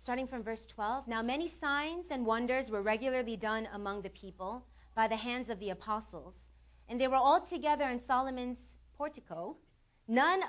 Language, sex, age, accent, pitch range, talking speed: English, female, 40-59, American, 205-275 Hz, 170 wpm